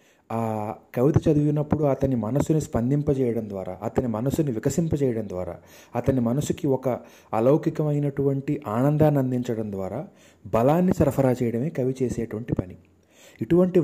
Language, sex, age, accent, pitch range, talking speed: Telugu, male, 30-49, native, 115-145 Hz, 105 wpm